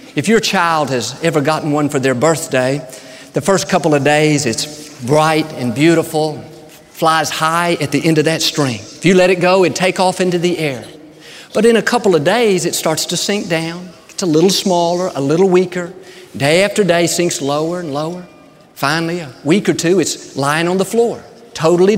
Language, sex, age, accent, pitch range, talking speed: English, male, 50-69, American, 150-185 Hz, 200 wpm